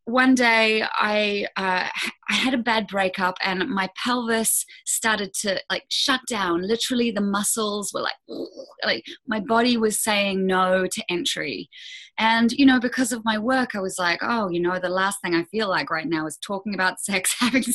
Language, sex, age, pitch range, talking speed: English, female, 20-39, 190-260 Hz, 190 wpm